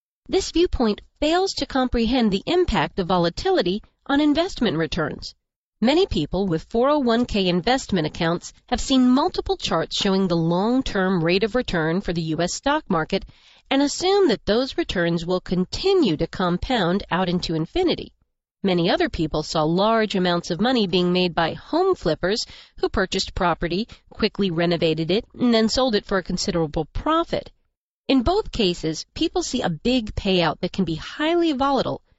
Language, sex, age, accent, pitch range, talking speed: English, female, 40-59, American, 175-270 Hz, 160 wpm